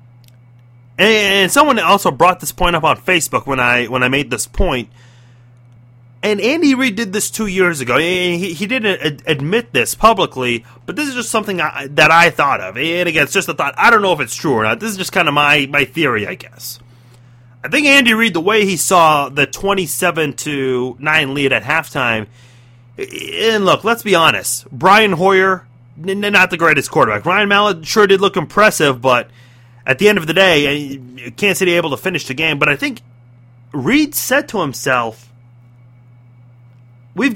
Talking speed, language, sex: 195 wpm, English, male